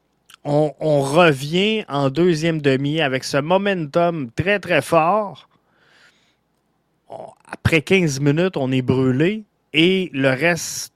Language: French